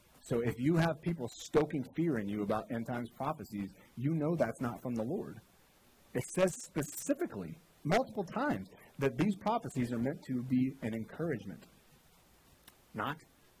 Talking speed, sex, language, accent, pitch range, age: 155 wpm, male, English, American, 110-145 Hz, 30-49